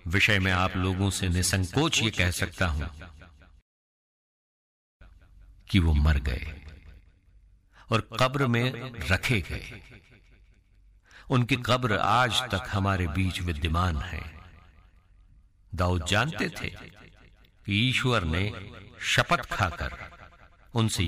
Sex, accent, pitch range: male, Indian, 80-100 Hz